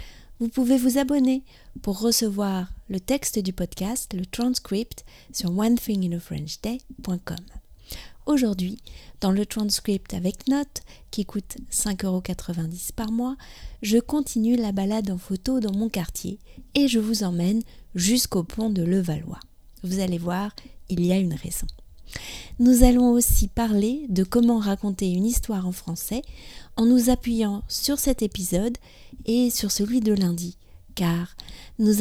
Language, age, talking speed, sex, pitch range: French, 30-49, 140 wpm, female, 185-240 Hz